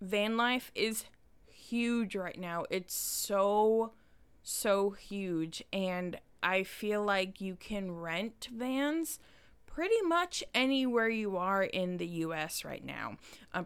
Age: 20-39